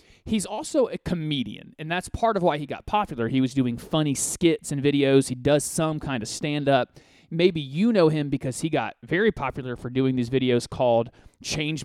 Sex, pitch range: male, 135-195 Hz